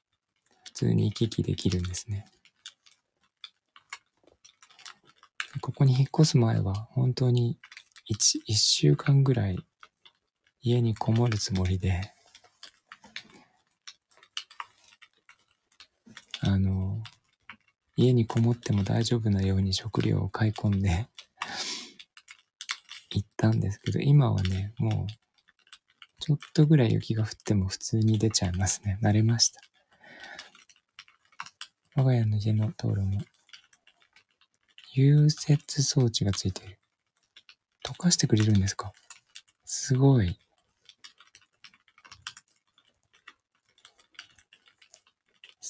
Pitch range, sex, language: 100-125 Hz, male, Japanese